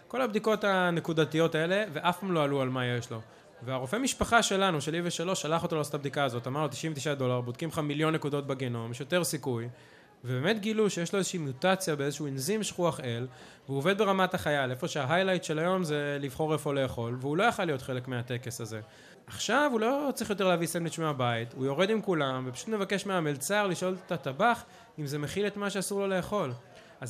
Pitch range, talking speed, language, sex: 145-195 Hz, 175 wpm, Hebrew, male